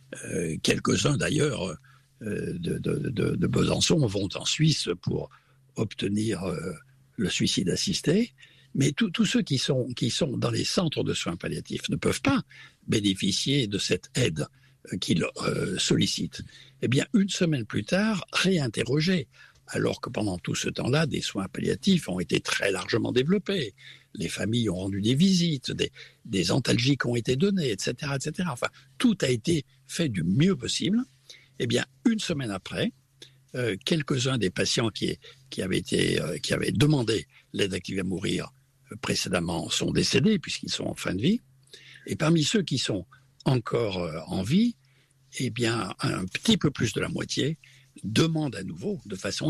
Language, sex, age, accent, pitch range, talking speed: French, male, 60-79, French, 130-175 Hz, 165 wpm